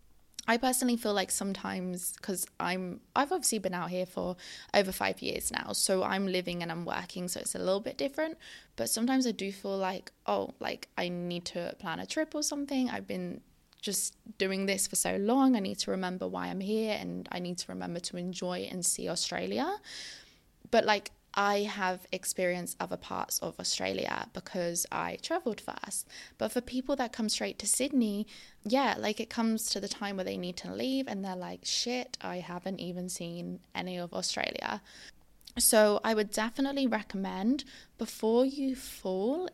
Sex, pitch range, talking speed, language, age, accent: female, 185-250 Hz, 185 wpm, English, 20-39, British